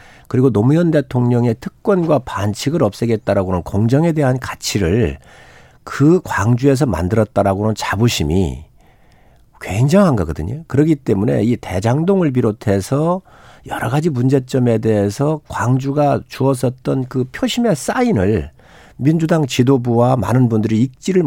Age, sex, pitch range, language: 50-69, male, 110-155 Hz, Korean